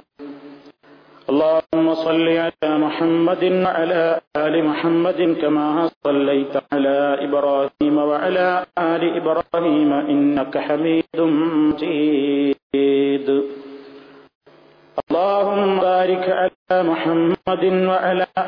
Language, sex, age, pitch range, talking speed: Malayalam, male, 50-69, 145-165 Hz, 95 wpm